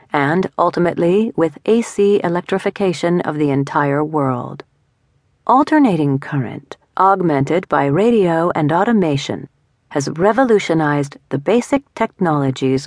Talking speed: 100 wpm